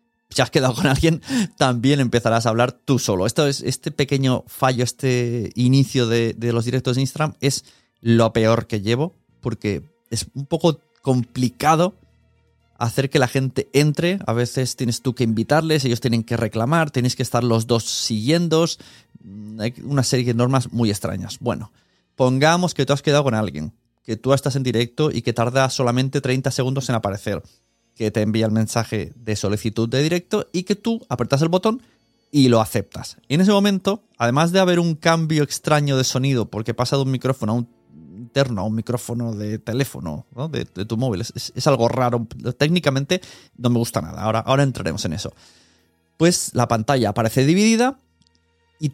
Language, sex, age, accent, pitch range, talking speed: Spanish, male, 30-49, Spanish, 115-150 Hz, 180 wpm